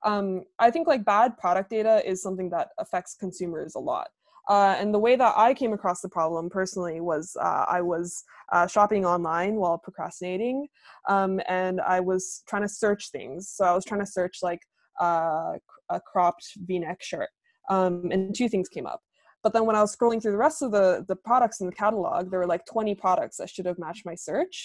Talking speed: 210 wpm